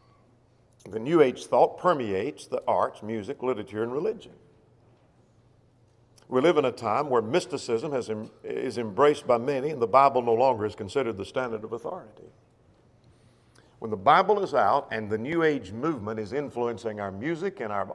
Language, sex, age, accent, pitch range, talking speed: English, male, 50-69, American, 110-140 Hz, 165 wpm